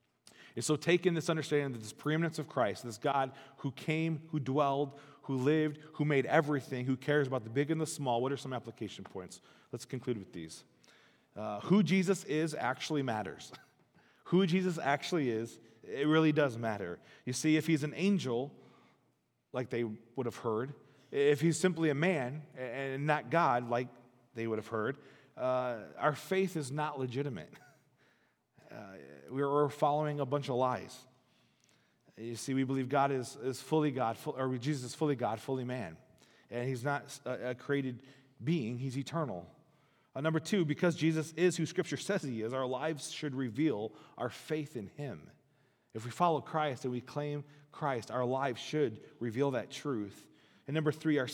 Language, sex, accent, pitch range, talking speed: English, male, American, 125-150 Hz, 180 wpm